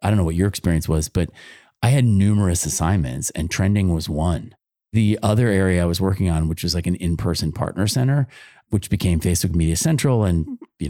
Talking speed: 205 wpm